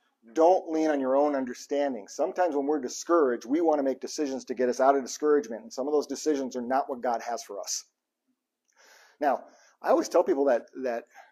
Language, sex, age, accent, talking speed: English, male, 50-69, American, 210 wpm